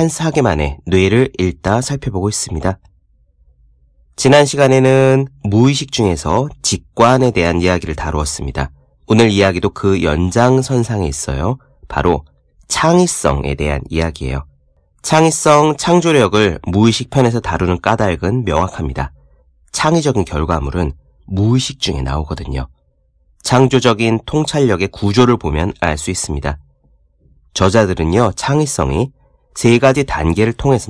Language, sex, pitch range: Korean, male, 75-125 Hz